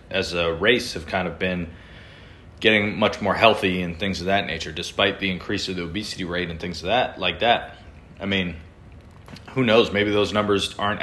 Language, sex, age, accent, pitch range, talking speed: English, male, 30-49, American, 85-100 Hz, 200 wpm